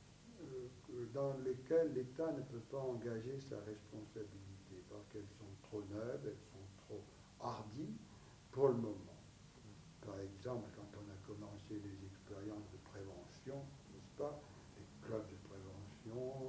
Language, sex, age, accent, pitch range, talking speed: English, male, 60-79, French, 105-130 Hz, 135 wpm